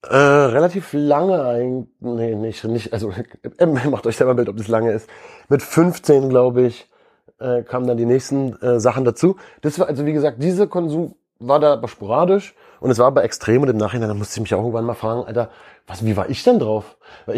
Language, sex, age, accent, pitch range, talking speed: German, male, 30-49, German, 115-150 Hz, 220 wpm